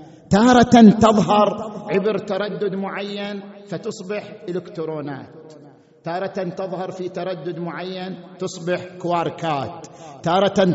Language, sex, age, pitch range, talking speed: Arabic, male, 50-69, 185-260 Hz, 85 wpm